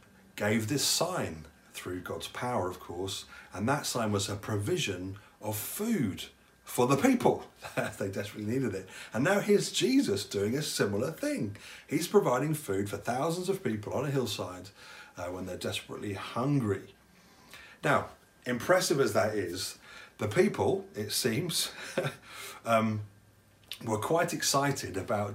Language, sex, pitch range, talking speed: English, male, 100-140 Hz, 140 wpm